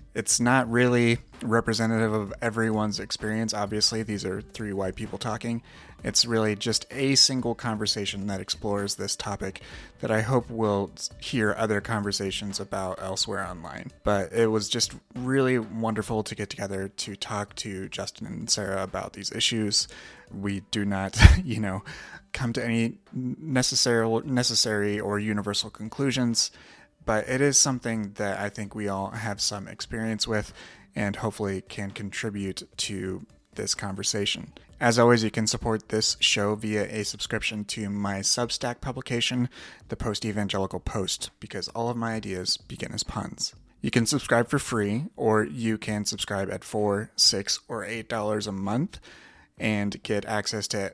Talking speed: 155 wpm